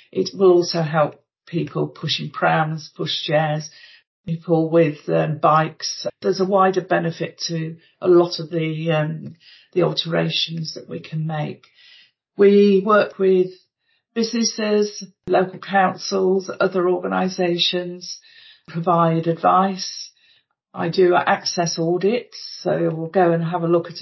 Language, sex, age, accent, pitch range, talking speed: English, female, 50-69, British, 165-190 Hz, 125 wpm